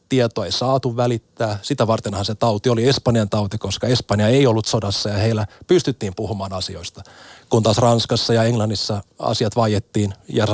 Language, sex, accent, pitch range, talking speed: Finnish, male, native, 105-130 Hz, 165 wpm